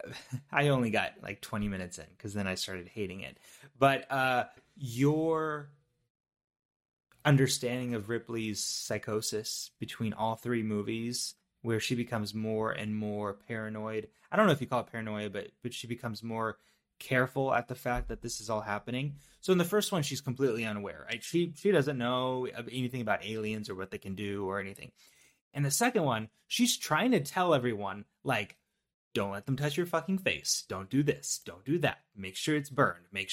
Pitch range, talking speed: 110-155 Hz, 185 wpm